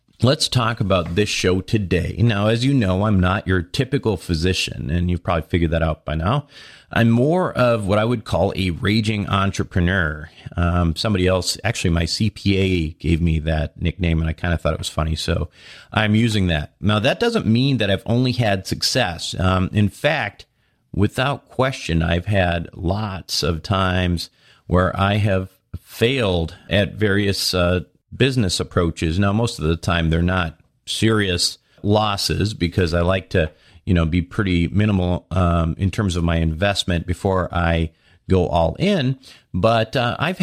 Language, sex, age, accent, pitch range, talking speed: English, male, 40-59, American, 85-110 Hz, 170 wpm